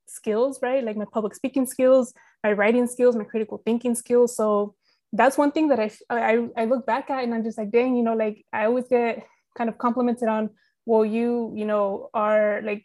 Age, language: 20-39, English